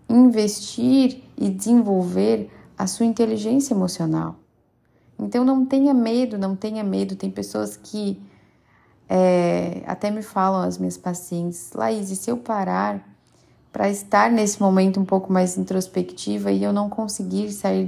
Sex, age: female, 30-49